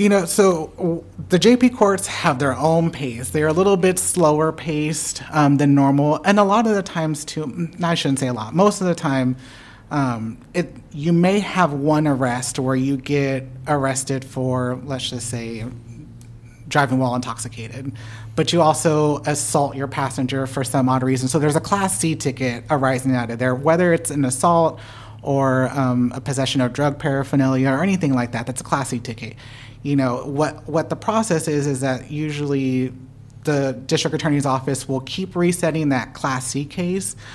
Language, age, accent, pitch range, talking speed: English, 30-49, American, 130-160 Hz, 185 wpm